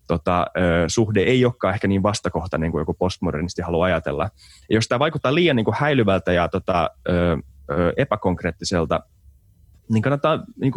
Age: 30-49